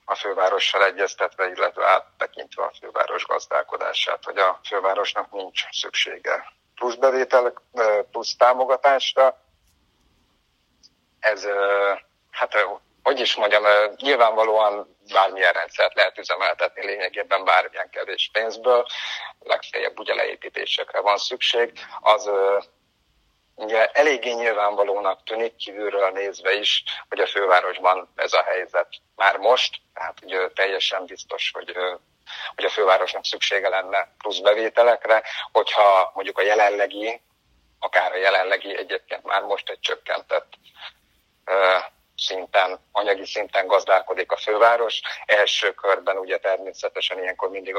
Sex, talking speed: male, 110 wpm